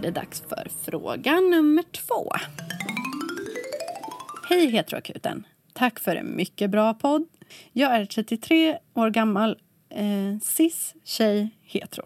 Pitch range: 185-235 Hz